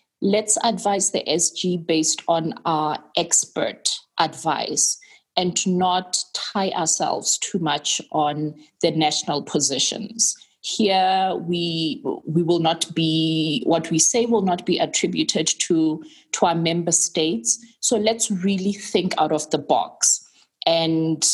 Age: 20-39